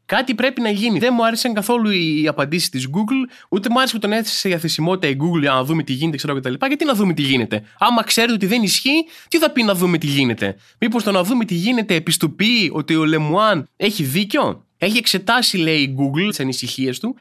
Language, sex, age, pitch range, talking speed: Greek, male, 20-39, 160-240 Hz, 235 wpm